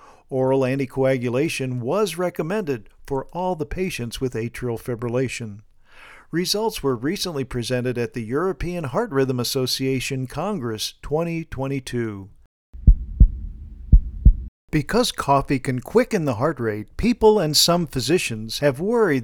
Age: 50-69